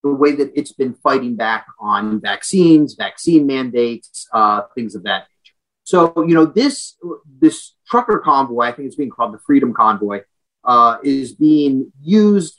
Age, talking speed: 30-49, 165 wpm